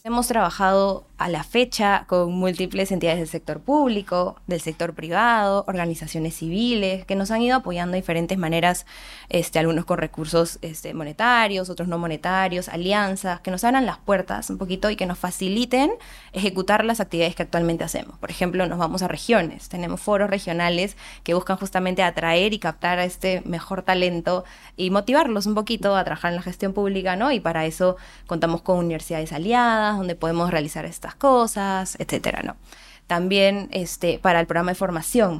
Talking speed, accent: 170 wpm, Argentinian